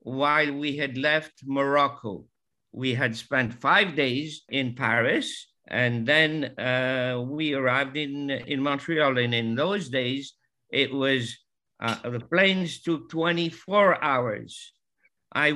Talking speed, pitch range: 130 wpm, 130-160 Hz